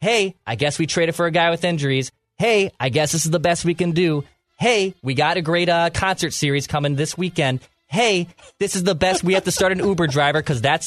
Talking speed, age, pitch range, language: 250 wpm, 20-39, 135-175 Hz, English